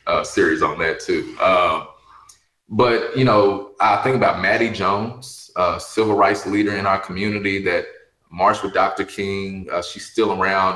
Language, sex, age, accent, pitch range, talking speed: English, male, 20-39, American, 95-125 Hz, 175 wpm